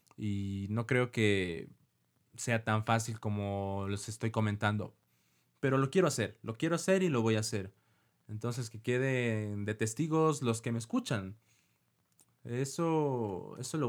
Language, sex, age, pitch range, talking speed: Spanish, male, 20-39, 110-130 Hz, 150 wpm